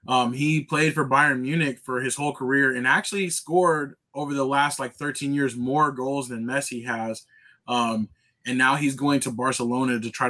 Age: 20-39